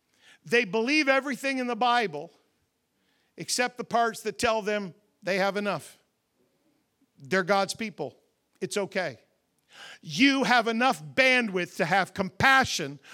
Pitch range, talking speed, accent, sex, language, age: 180-255 Hz, 125 wpm, American, male, English, 50-69